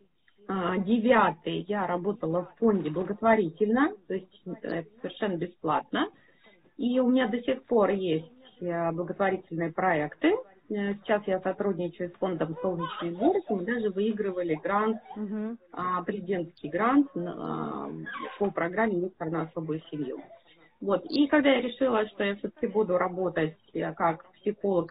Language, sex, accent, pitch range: Russian, female, native, 175-235 Hz